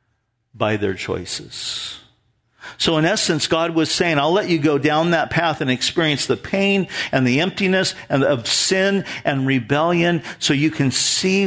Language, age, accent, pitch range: English, 50-69, American, 125-195 Hz